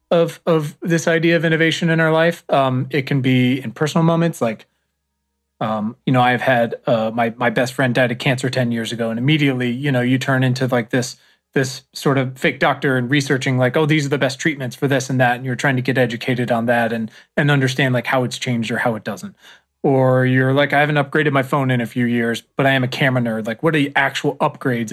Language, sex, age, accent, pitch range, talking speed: English, male, 30-49, American, 115-145 Hz, 250 wpm